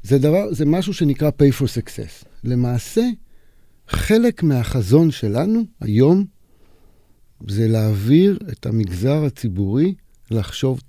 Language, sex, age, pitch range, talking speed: Hebrew, male, 50-69, 110-155 Hz, 105 wpm